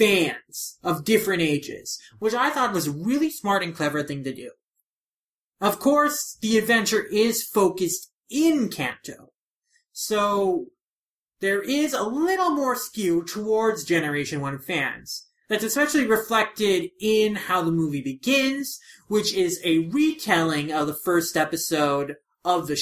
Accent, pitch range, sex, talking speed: American, 180-255 Hz, male, 140 wpm